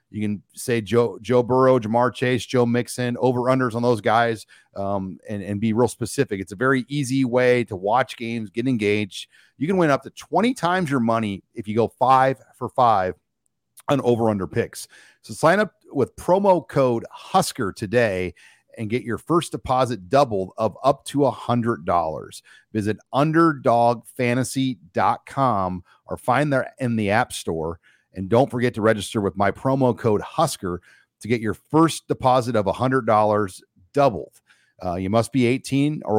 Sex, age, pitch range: male, 40-59, 105-130 Hz